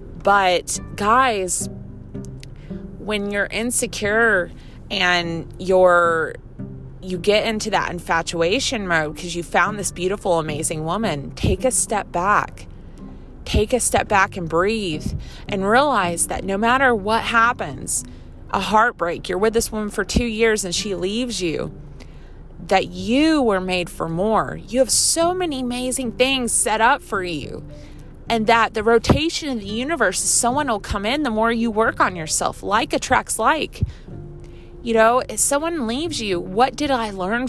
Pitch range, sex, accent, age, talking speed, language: 180-250 Hz, female, American, 30-49, 150 wpm, English